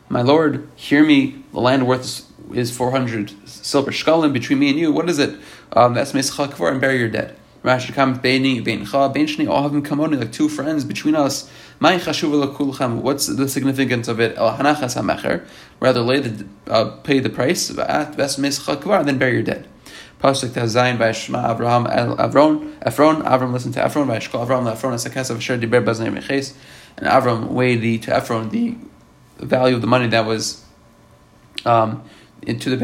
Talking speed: 165 wpm